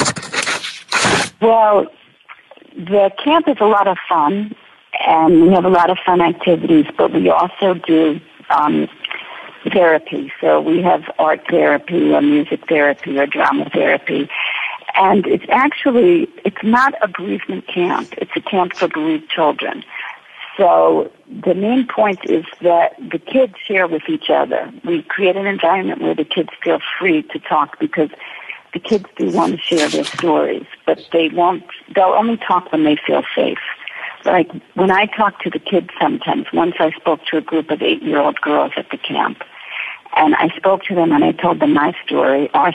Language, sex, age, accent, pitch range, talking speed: English, female, 60-79, American, 170-245 Hz, 170 wpm